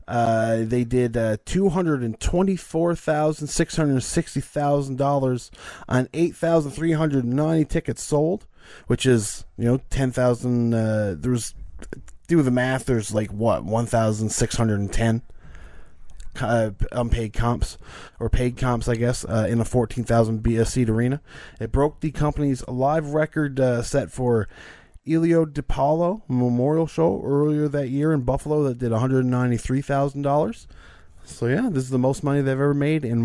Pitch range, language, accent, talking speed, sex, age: 115-145 Hz, English, American, 160 wpm, male, 20-39